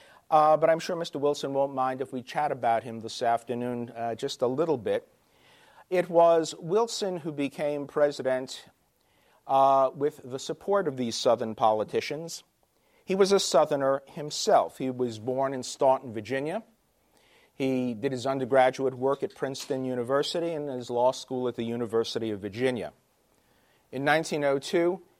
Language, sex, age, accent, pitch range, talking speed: English, male, 50-69, American, 120-150 Hz, 150 wpm